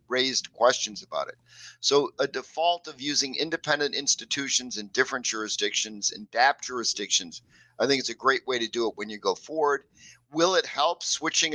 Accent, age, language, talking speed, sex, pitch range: American, 50-69, English, 175 wpm, male, 120-150 Hz